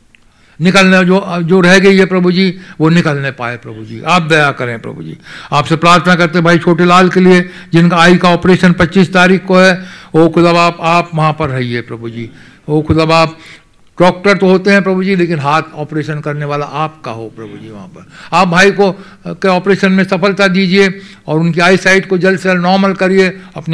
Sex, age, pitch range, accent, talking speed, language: male, 60-79, 155-185 Hz, Indian, 145 wpm, English